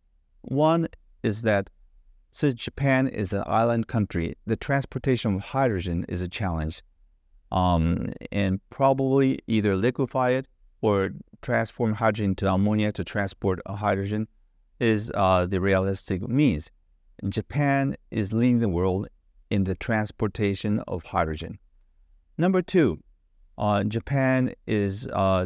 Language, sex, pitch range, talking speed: English, male, 90-120 Hz, 120 wpm